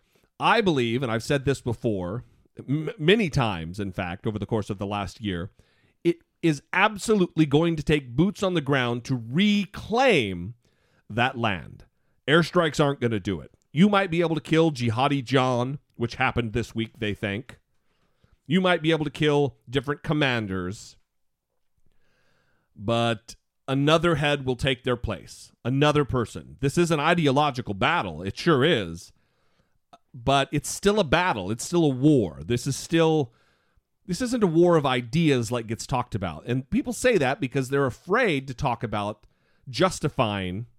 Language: English